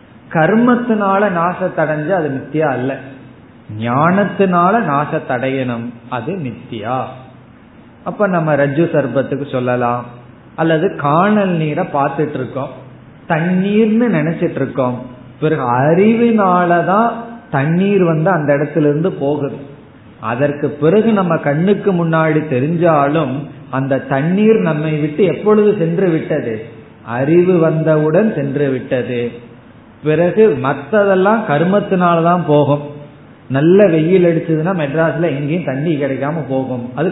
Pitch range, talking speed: 135-175 Hz, 90 wpm